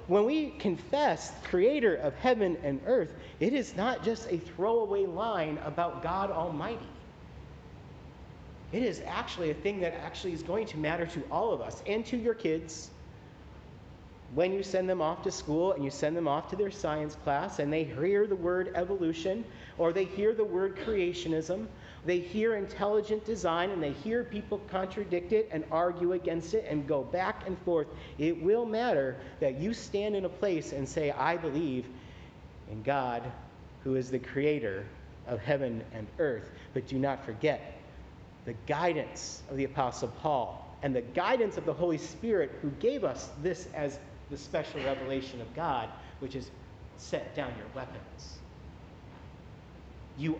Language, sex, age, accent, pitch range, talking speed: English, male, 40-59, American, 140-195 Hz, 170 wpm